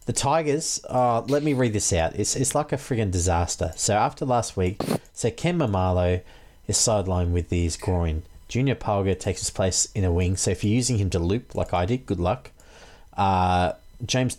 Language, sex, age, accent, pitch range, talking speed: English, male, 30-49, Australian, 95-115 Hz, 200 wpm